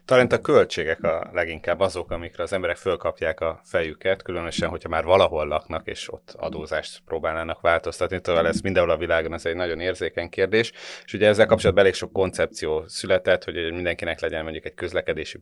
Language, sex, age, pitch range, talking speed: Hungarian, male, 30-49, 85-110 Hz, 175 wpm